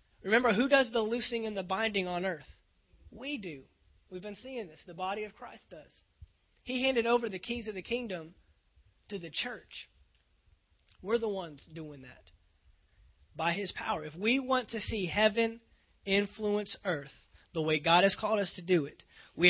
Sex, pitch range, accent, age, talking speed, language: male, 150-200 Hz, American, 30-49, 180 wpm, English